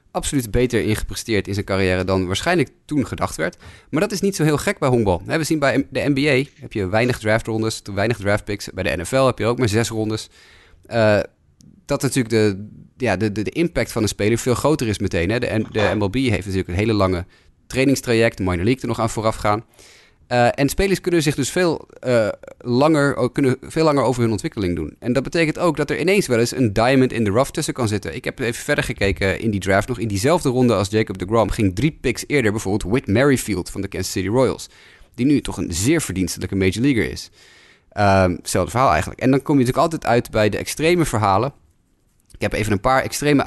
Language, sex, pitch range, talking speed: Dutch, male, 100-135 Hz, 230 wpm